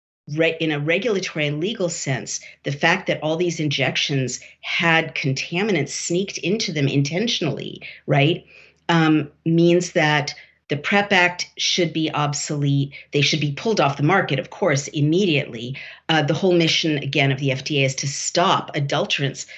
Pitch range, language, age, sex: 140-165 Hz, English, 50-69, female